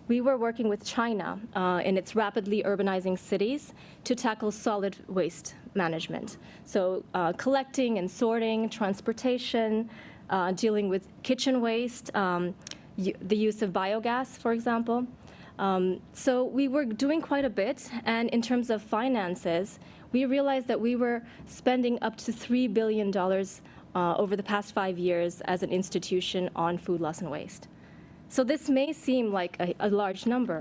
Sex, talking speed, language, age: female, 155 wpm, English, 20-39